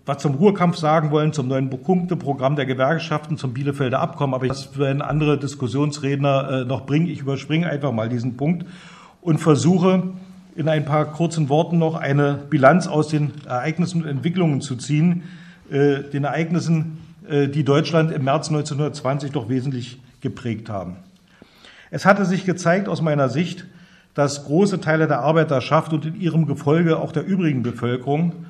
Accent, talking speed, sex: German, 160 wpm, male